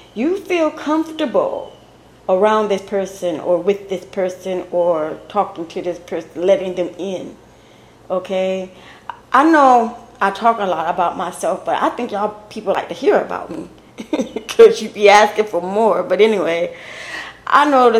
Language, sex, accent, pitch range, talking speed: English, female, American, 185-230 Hz, 155 wpm